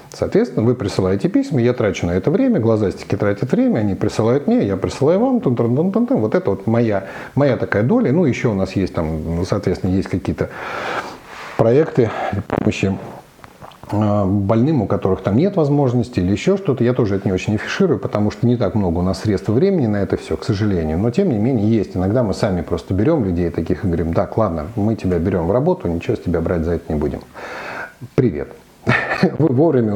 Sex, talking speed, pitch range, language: male, 190 wpm, 100-125 Hz, Russian